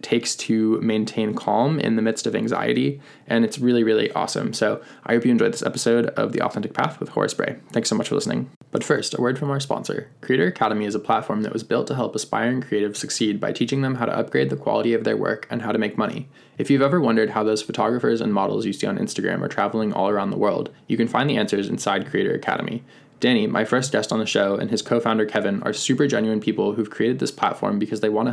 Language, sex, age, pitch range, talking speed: English, male, 20-39, 110-130 Hz, 250 wpm